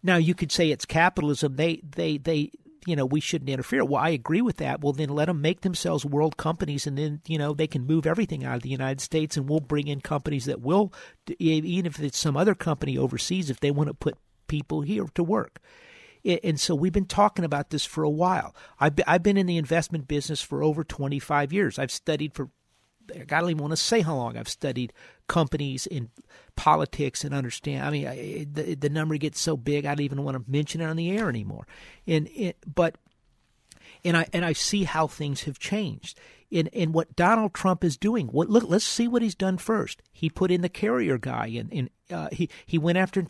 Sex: male